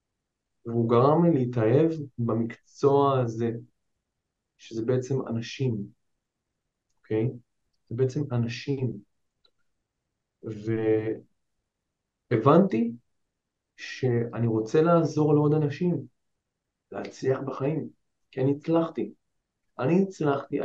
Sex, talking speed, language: male, 80 wpm, Hebrew